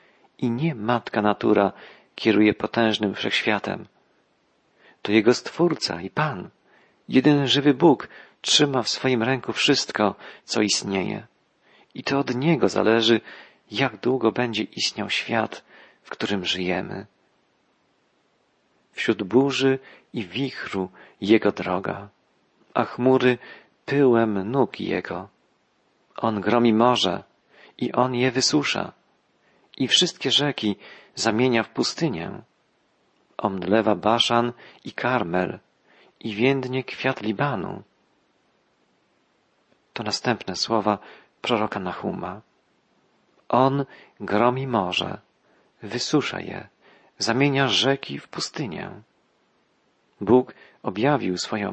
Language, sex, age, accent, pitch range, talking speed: Polish, male, 40-59, native, 105-130 Hz, 95 wpm